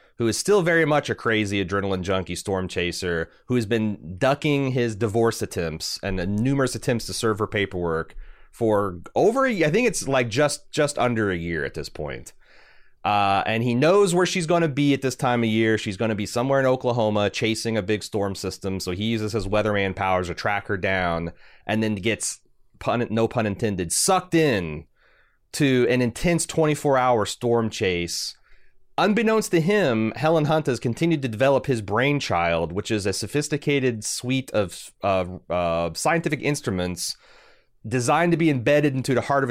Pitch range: 95-135 Hz